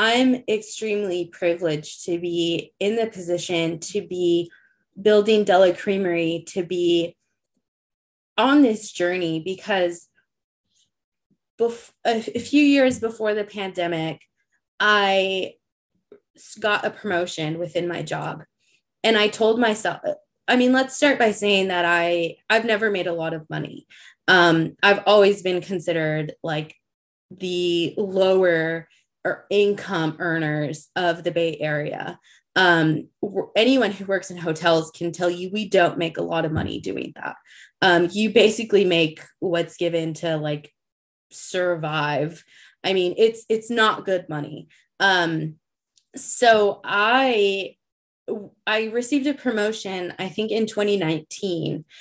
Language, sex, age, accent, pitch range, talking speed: English, female, 20-39, American, 170-215 Hz, 130 wpm